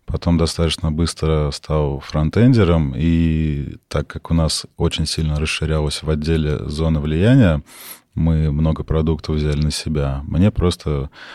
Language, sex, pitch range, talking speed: Russian, male, 80-90 Hz, 130 wpm